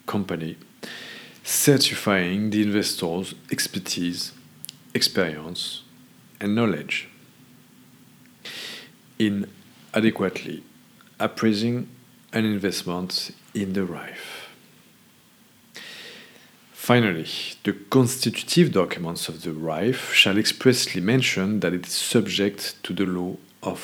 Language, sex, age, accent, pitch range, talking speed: English, male, 50-69, French, 95-130 Hz, 85 wpm